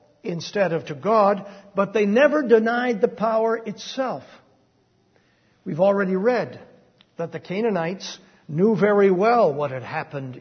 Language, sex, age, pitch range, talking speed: English, male, 60-79, 160-210 Hz, 135 wpm